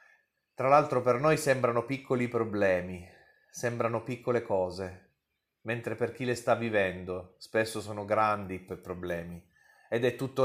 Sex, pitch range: male, 100-125 Hz